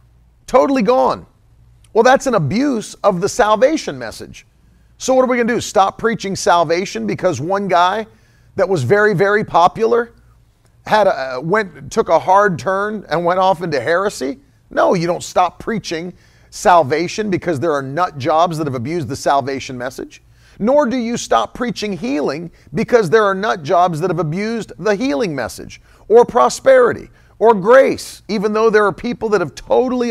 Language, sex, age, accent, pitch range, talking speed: English, male, 40-59, American, 145-215 Hz, 170 wpm